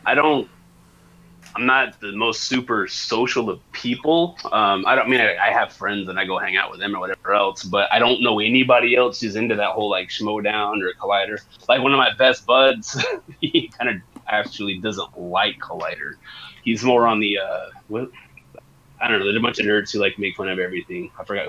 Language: English